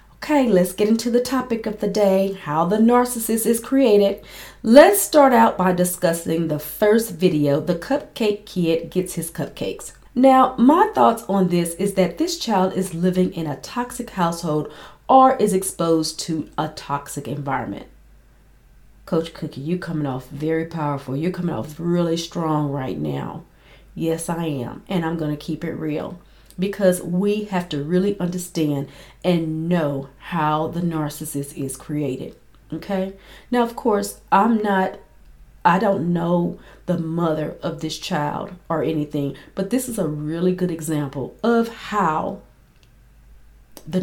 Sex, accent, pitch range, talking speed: female, American, 155-205 Hz, 155 wpm